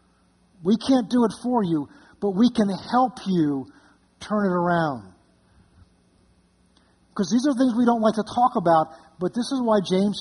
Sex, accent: male, American